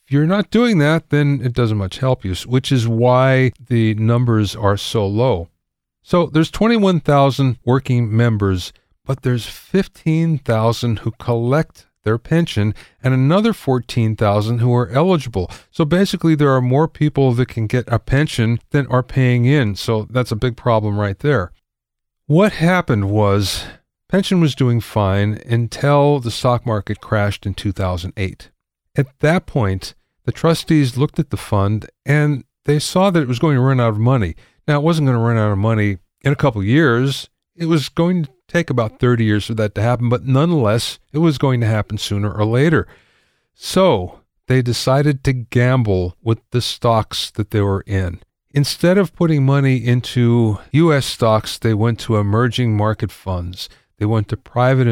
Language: English